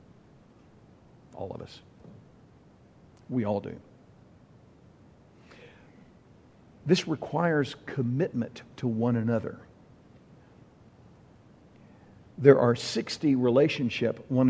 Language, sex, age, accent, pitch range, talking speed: English, male, 50-69, American, 130-195 Hz, 70 wpm